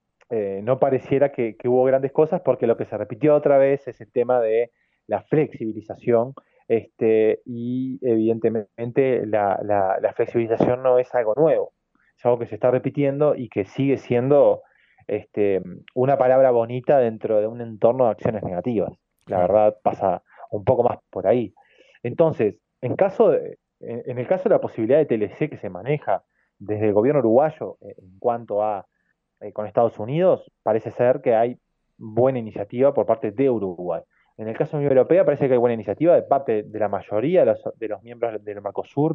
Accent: Argentinian